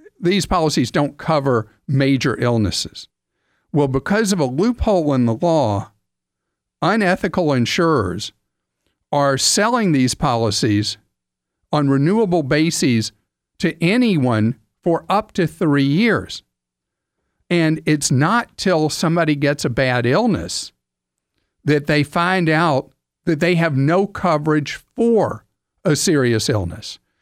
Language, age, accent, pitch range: English, 50-69, American, 130-175 Hz